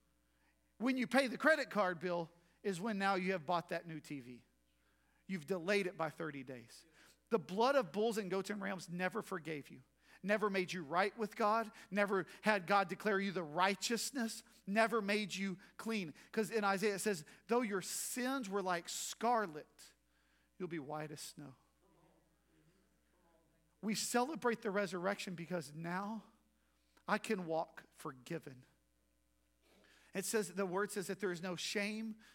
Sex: male